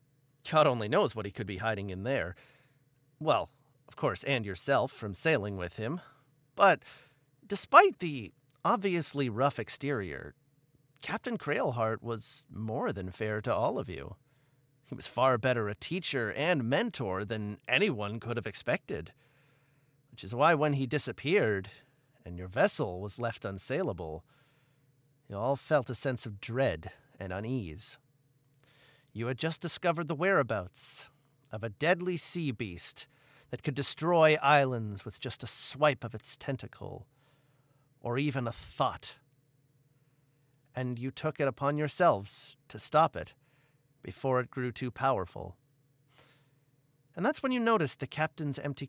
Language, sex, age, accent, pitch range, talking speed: English, male, 30-49, American, 115-145 Hz, 145 wpm